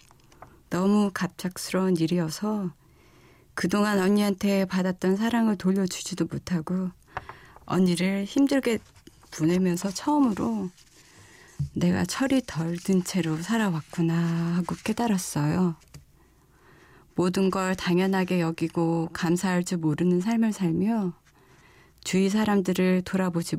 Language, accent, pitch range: Korean, native, 175-200 Hz